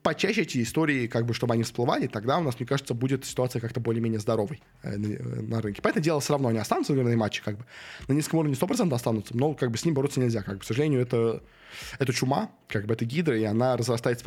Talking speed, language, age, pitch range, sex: 245 wpm, Russian, 20-39, 115-135 Hz, male